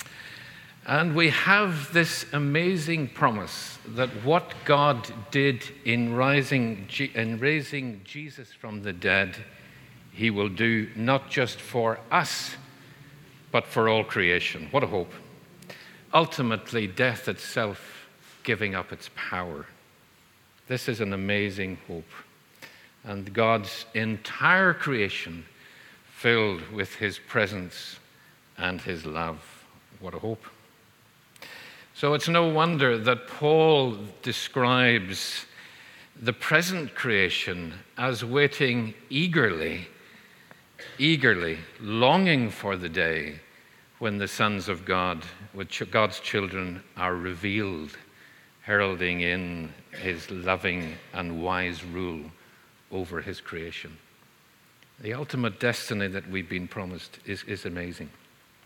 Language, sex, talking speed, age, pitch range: English, male, 105 wpm, 50-69, 95-140 Hz